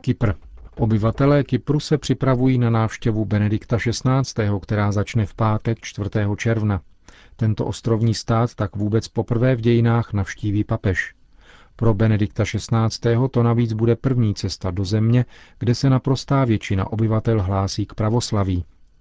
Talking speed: 135 wpm